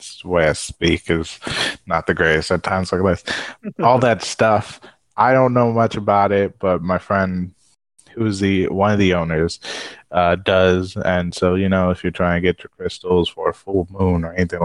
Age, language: 20-39, English